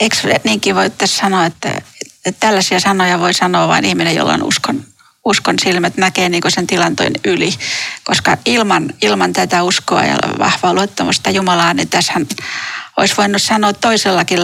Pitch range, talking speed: 180-215 Hz, 160 wpm